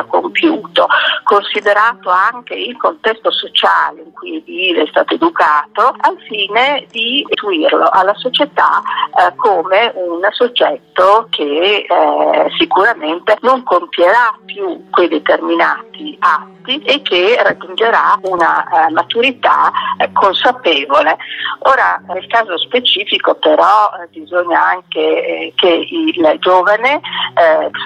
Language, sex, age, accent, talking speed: Italian, female, 50-69, native, 110 wpm